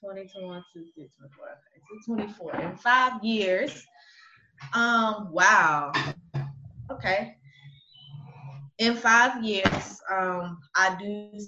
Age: 20-39